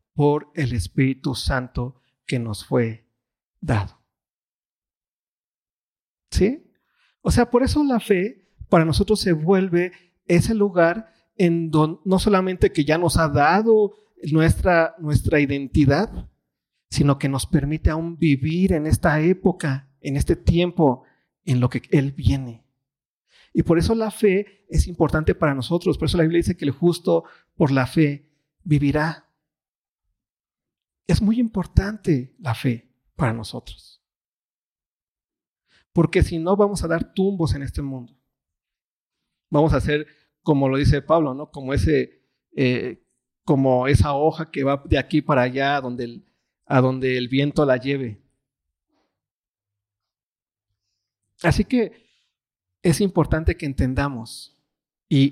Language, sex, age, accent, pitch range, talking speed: Spanish, male, 40-59, Mexican, 130-170 Hz, 135 wpm